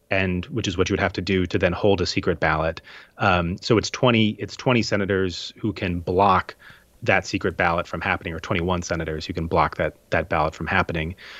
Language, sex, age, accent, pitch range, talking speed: English, male, 30-49, American, 95-110 Hz, 215 wpm